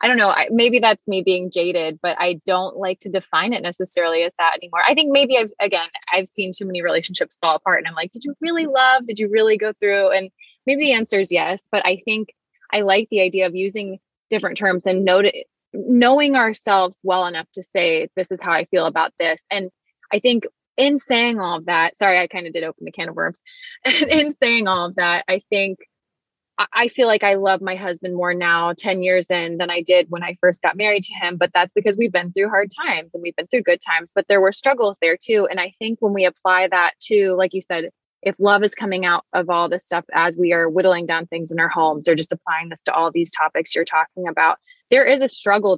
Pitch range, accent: 175-215 Hz, American